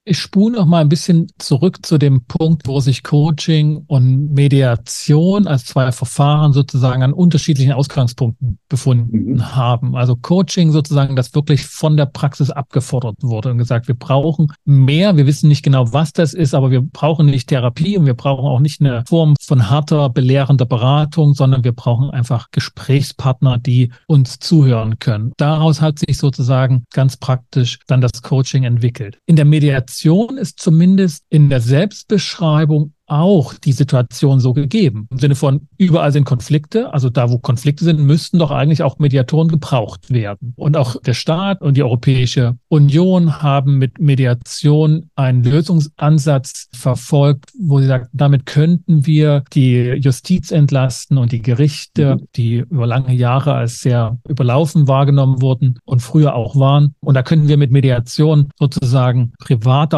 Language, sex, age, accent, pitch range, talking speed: German, male, 40-59, German, 130-155 Hz, 160 wpm